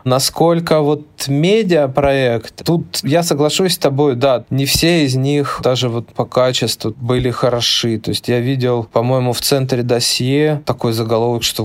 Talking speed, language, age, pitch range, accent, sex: 155 wpm, Russian, 20-39, 120-140 Hz, native, male